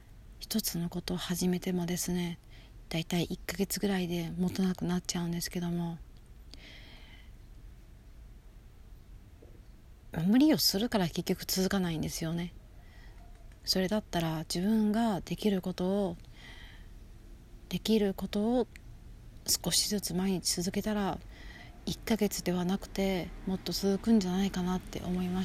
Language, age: Japanese, 40-59